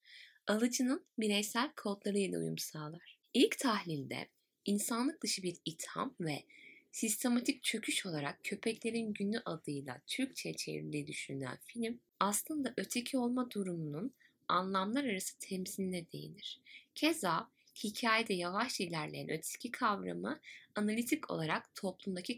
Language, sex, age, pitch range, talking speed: Turkish, female, 10-29, 165-240 Hz, 105 wpm